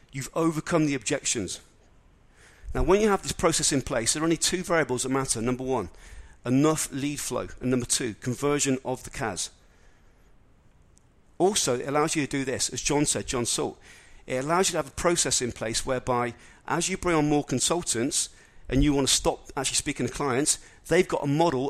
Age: 40-59